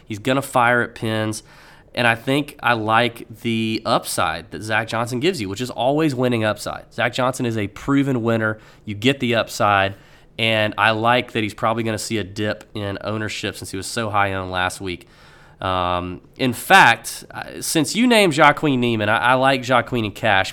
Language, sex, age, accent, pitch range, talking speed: English, male, 20-39, American, 100-135 Hz, 200 wpm